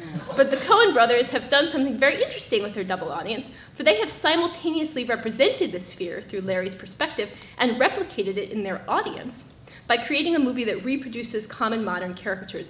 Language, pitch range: English, 205-280 Hz